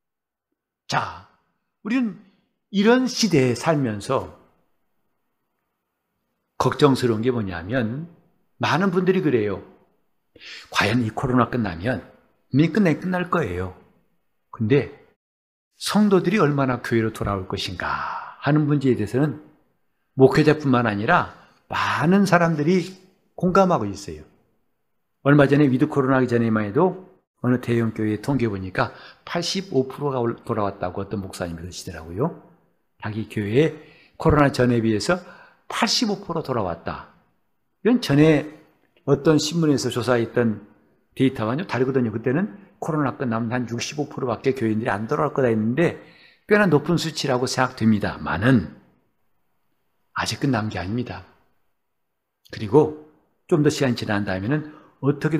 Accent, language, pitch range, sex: native, Korean, 110-155 Hz, male